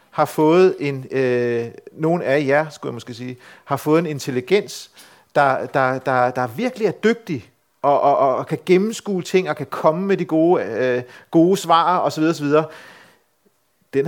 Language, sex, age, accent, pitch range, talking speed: Danish, male, 40-59, native, 135-180 Hz, 170 wpm